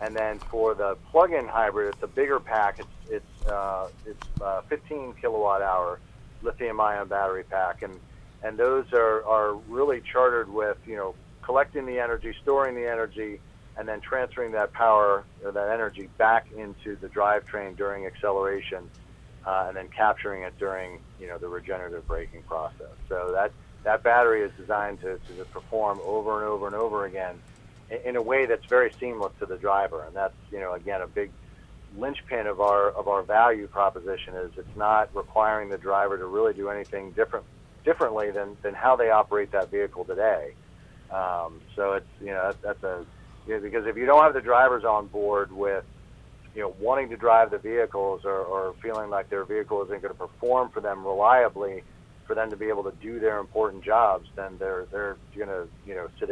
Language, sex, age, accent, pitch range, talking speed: English, male, 50-69, American, 100-135 Hz, 195 wpm